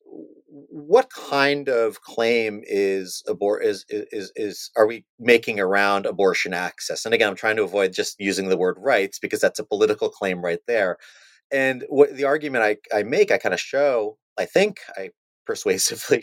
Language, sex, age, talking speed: English, male, 30-49, 180 wpm